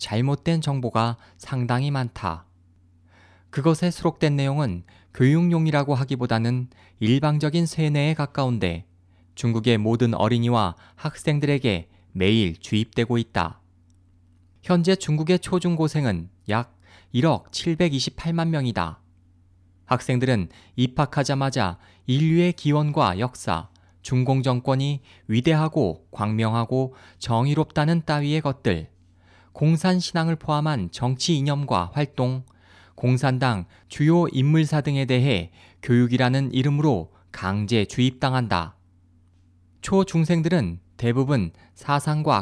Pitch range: 90-145 Hz